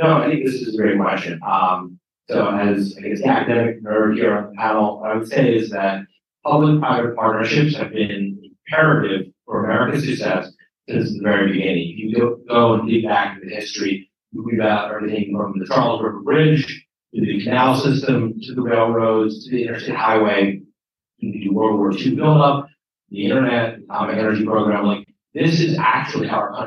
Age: 30-49